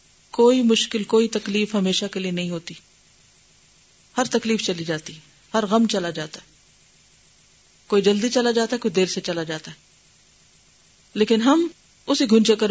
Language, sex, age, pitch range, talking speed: Urdu, female, 40-59, 195-280 Hz, 160 wpm